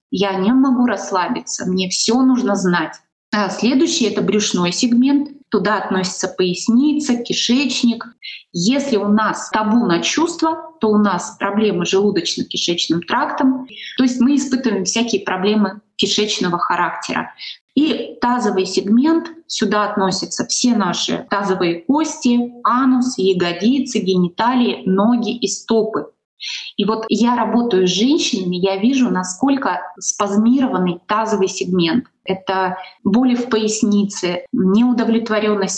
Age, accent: 20-39, native